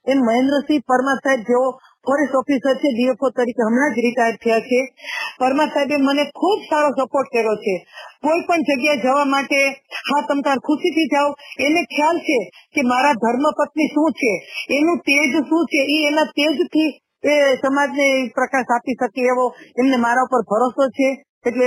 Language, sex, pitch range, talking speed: Gujarati, female, 250-290 Hz, 110 wpm